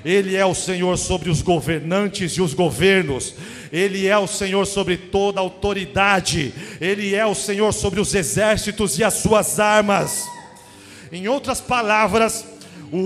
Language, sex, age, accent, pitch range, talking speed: Portuguese, male, 40-59, Brazilian, 185-230 Hz, 145 wpm